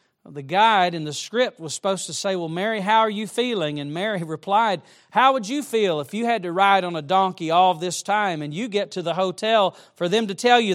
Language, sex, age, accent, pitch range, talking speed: English, male, 40-59, American, 160-220 Hz, 245 wpm